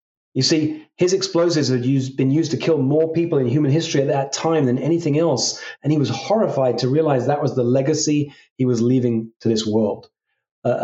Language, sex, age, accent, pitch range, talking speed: English, male, 30-49, British, 125-165 Hz, 205 wpm